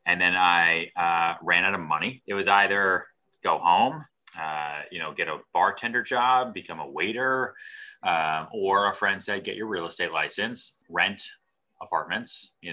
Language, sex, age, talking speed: English, male, 30-49, 170 wpm